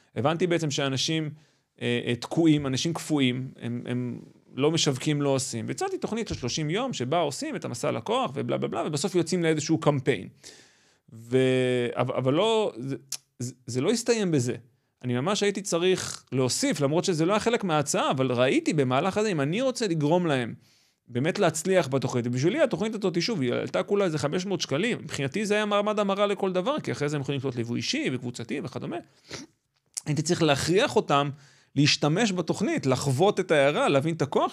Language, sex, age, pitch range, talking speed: Hebrew, male, 30-49, 135-170 Hz, 155 wpm